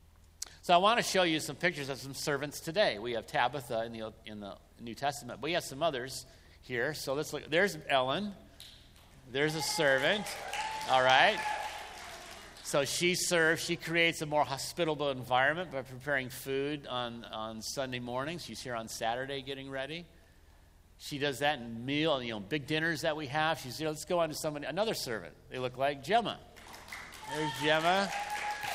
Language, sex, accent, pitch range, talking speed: English, male, American, 125-170 Hz, 180 wpm